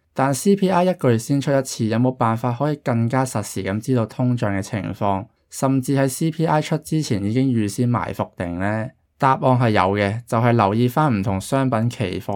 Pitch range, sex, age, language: 100-130 Hz, male, 20-39, Chinese